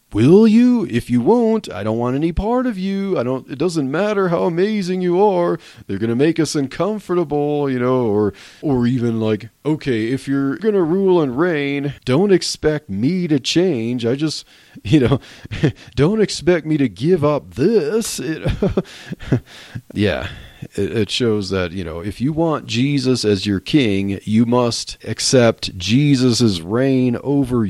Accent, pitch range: American, 100-145 Hz